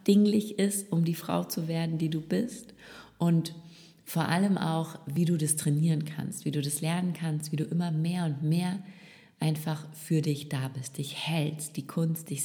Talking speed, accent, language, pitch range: 195 wpm, German, German, 135-165 Hz